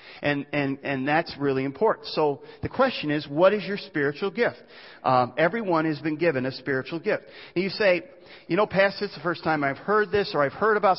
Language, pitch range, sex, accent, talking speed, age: English, 140-180 Hz, male, American, 220 wpm, 40-59